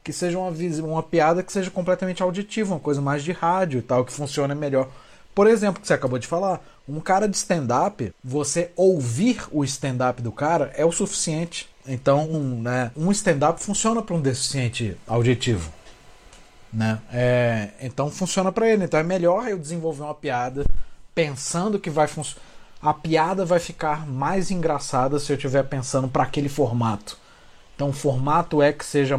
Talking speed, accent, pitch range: 175 wpm, Brazilian, 135-185 Hz